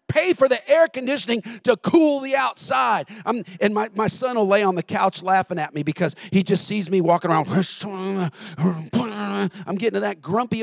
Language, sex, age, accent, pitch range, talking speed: English, male, 40-59, American, 170-245 Hz, 185 wpm